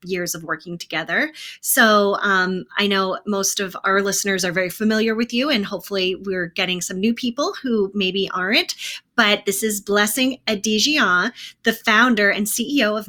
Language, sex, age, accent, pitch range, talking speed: English, female, 20-39, American, 185-225 Hz, 170 wpm